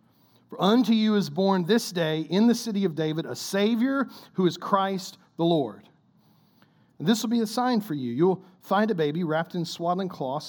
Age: 40-59